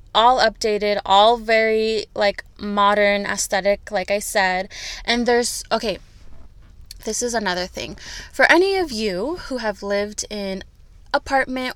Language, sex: English, female